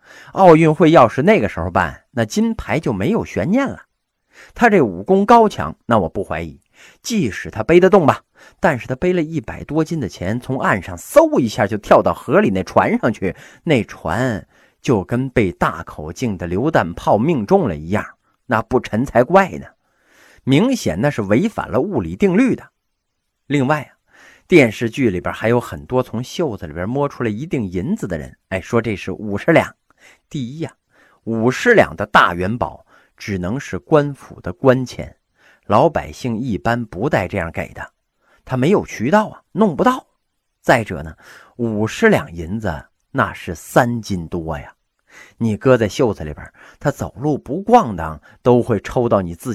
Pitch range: 105-160 Hz